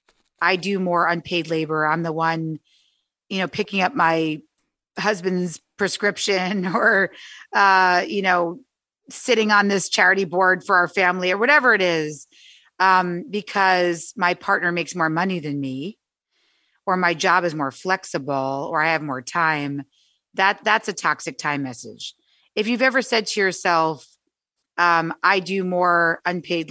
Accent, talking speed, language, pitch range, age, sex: American, 155 wpm, English, 160-190 Hz, 30-49, female